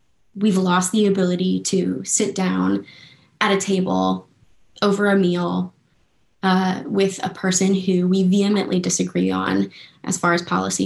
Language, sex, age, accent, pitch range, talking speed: English, female, 20-39, American, 170-195 Hz, 145 wpm